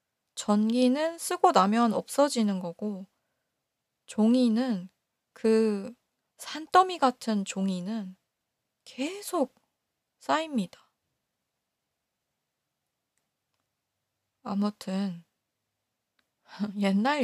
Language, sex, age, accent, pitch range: Korean, female, 20-39, native, 190-245 Hz